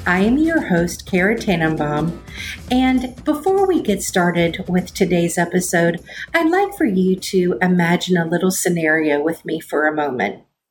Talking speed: 155 wpm